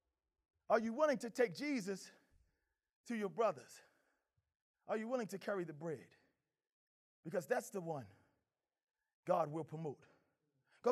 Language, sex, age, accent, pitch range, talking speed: English, male, 30-49, American, 200-285 Hz, 130 wpm